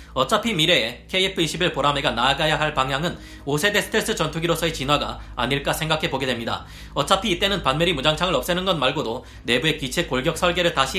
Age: 30-49